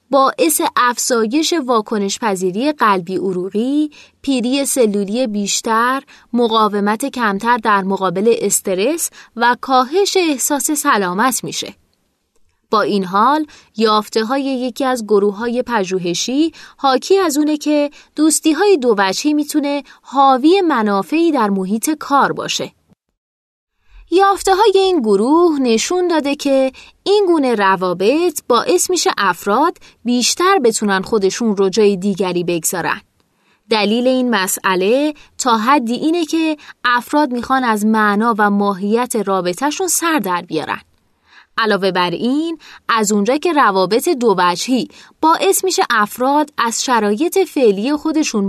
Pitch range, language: 205-300 Hz, Persian